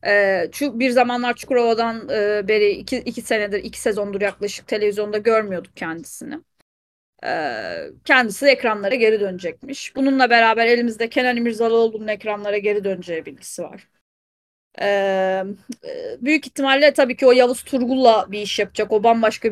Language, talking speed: Turkish, 120 wpm